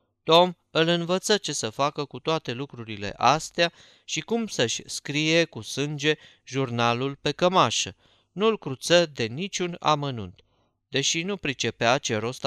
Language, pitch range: Romanian, 120-165 Hz